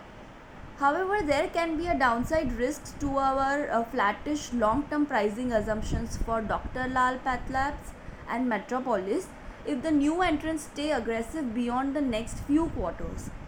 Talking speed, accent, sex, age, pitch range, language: 140 wpm, Indian, female, 20-39, 235-300 Hz, English